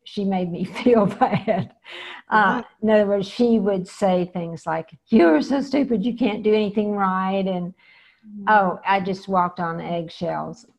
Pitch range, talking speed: 170-200 Hz, 165 wpm